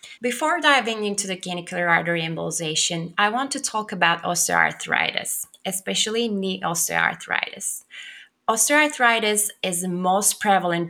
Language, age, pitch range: English, 20-39, 175-230 Hz